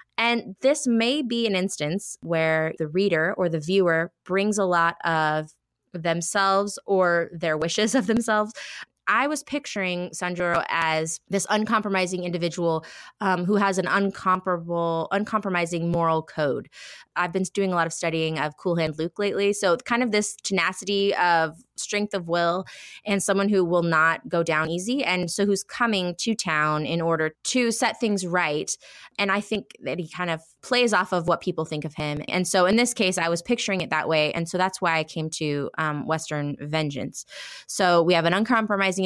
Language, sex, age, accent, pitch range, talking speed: English, female, 20-39, American, 160-200 Hz, 185 wpm